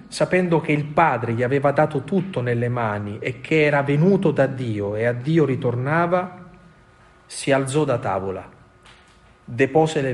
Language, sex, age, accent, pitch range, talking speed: Italian, male, 40-59, native, 115-140 Hz, 155 wpm